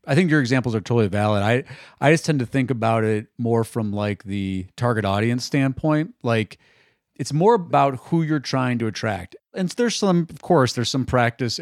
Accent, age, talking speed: American, 40-59, 200 wpm